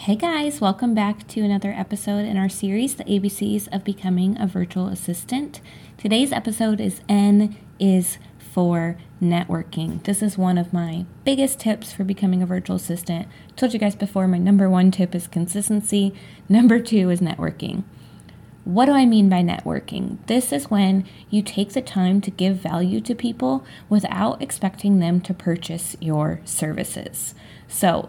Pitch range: 180-225 Hz